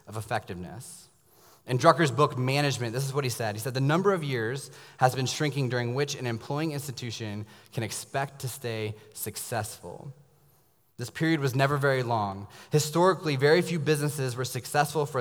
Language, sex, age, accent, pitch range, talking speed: English, male, 20-39, American, 105-130 Hz, 165 wpm